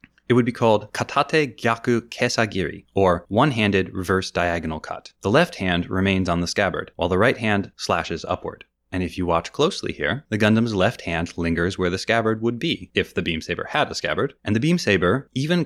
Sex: male